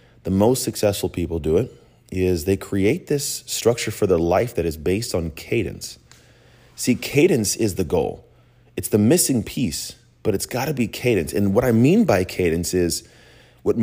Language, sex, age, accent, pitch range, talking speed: English, male, 30-49, American, 90-120 Hz, 180 wpm